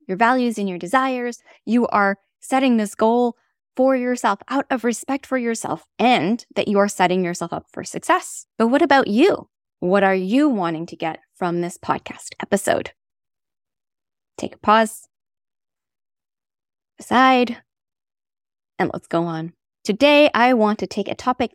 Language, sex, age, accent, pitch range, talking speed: English, female, 20-39, American, 180-245 Hz, 155 wpm